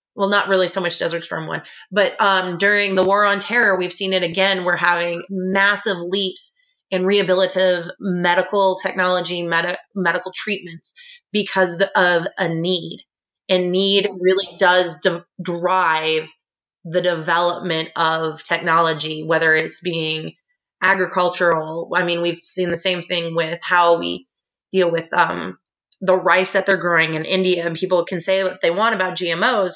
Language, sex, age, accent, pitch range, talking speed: English, female, 20-39, American, 170-195 Hz, 155 wpm